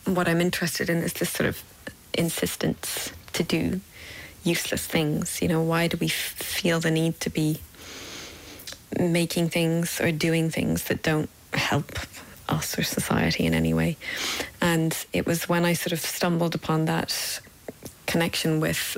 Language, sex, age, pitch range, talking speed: English, female, 30-49, 155-175 Hz, 160 wpm